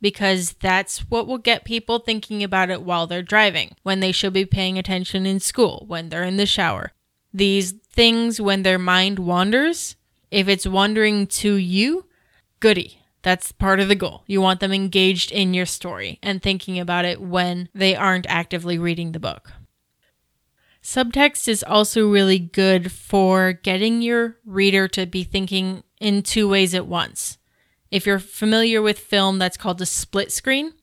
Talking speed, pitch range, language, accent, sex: 170 wpm, 185-205 Hz, English, American, female